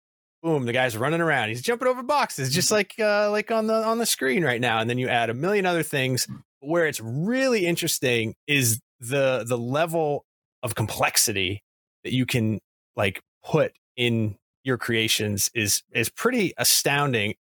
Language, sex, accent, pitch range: English, male, American, 110-150 Hz